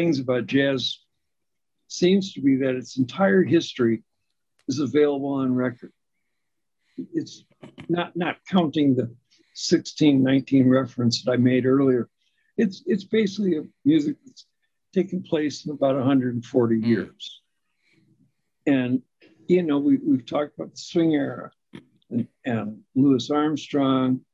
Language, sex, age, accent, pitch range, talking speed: English, male, 60-79, American, 130-165 Hz, 125 wpm